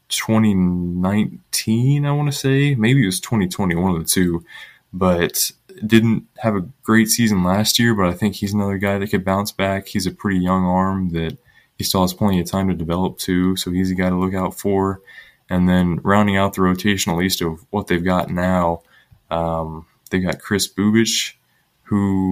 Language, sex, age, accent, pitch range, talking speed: English, male, 20-39, American, 90-100 Hz, 195 wpm